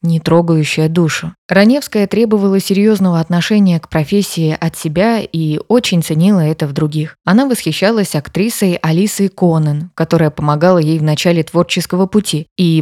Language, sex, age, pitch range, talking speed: Russian, female, 20-39, 155-195 Hz, 140 wpm